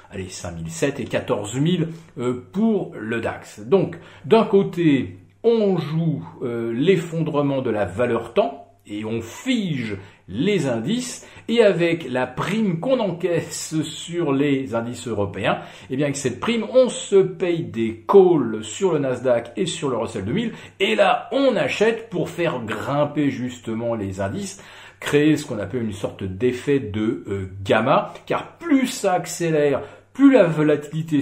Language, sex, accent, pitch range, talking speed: French, male, French, 120-190 Hz, 150 wpm